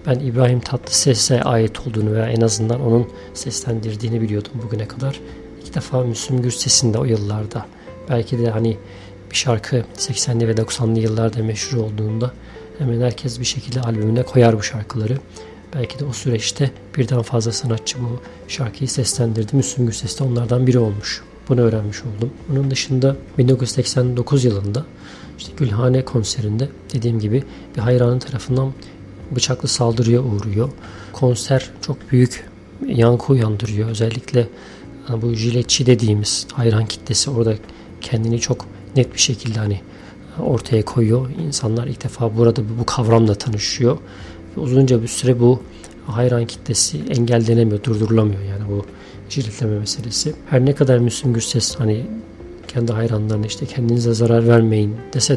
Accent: native